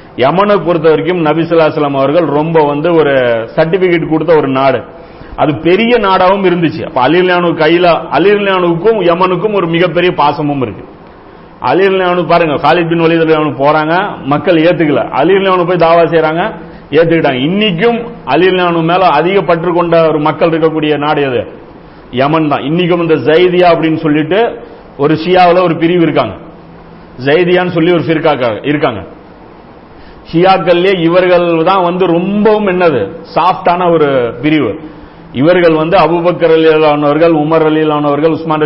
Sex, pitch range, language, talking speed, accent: male, 155-180 Hz, Tamil, 110 wpm, native